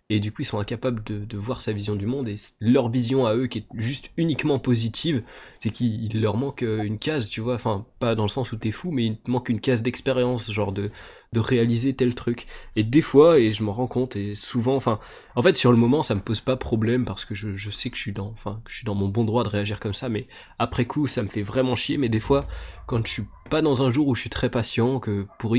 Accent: French